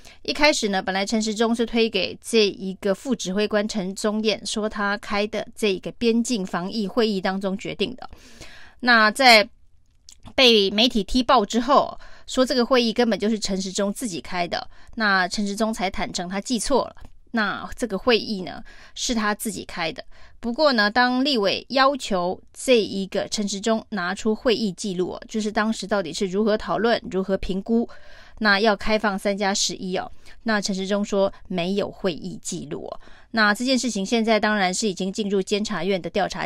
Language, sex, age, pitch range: Chinese, female, 20-39, 195-230 Hz